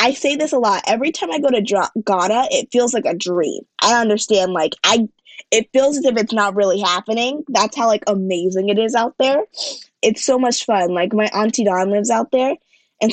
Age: 20-39